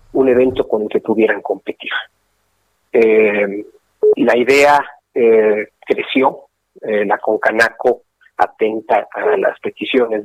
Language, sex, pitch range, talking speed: Spanish, male, 115-190 Hz, 110 wpm